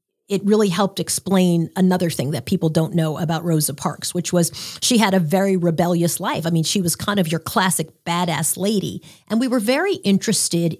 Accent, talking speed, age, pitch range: American, 200 wpm, 40-59, 170-205 Hz